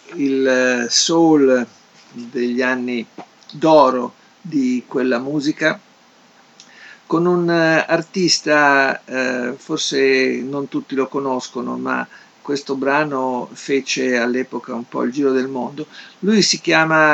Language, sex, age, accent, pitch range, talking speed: Italian, male, 50-69, native, 125-155 Hz, 110 wpm